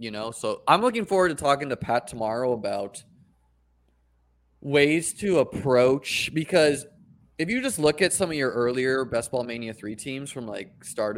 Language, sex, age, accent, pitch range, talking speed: English, male, 20-39, American, 105-140 Hz, 175 wpm